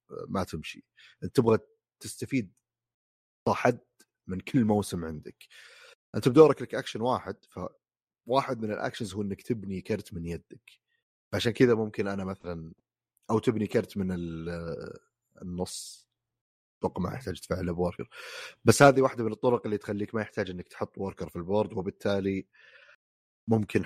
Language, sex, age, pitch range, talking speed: Arabic, male, 30-49, 90-120 Hz, 140 wpm